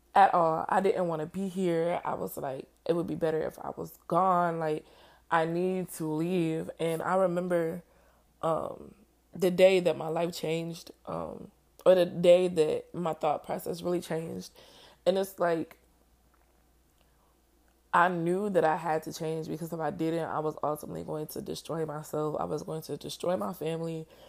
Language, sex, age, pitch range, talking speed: English, female, 20-39, 155-175 Hz, 180 wpm